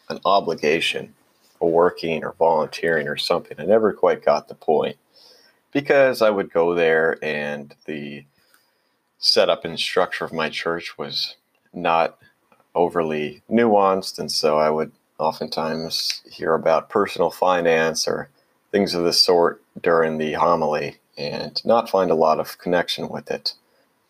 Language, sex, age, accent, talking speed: English, male, 30-49, American, 140 wpm